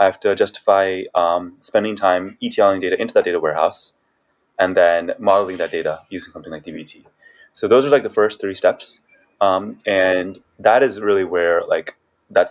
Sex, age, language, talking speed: male, 20-39, English, 180 wpm